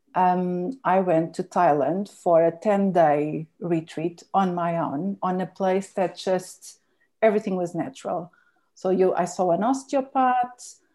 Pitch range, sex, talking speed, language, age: 175-210 Hz, female, 135 wpm, English, 50-69